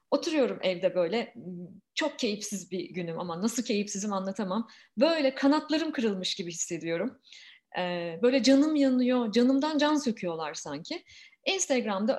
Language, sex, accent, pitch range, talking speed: Turkish, female, native, 200-270 Hz, 120 wpm